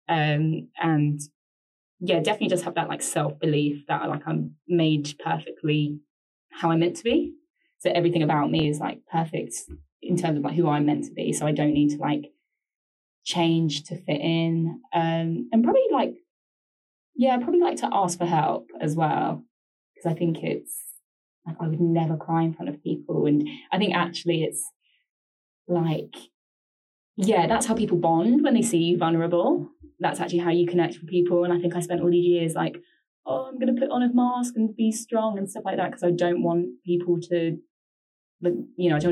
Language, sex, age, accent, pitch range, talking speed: English, female, 10-29, British, 160-190 Hz, 200 wpm